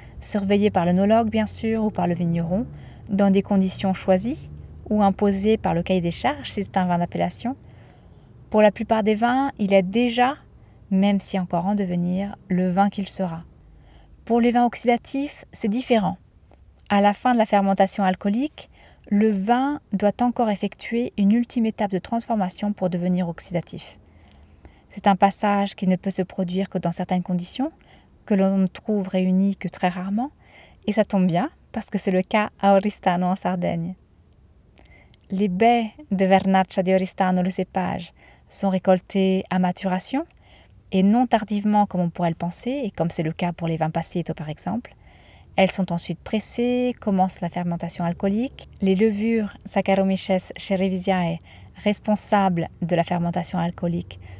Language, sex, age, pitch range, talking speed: French, female, 20-39, 180-215 Hz, 165 wpm